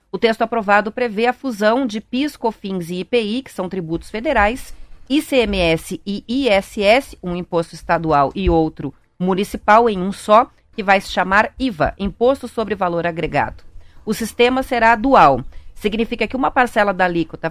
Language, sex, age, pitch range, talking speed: Portuguese, female, 40-59, 185-245 Hz, 160 wpm